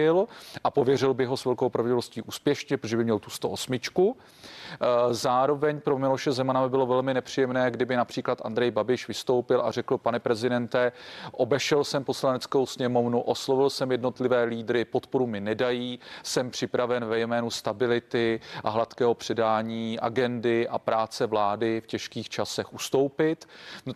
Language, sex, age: Czech, male, 40-59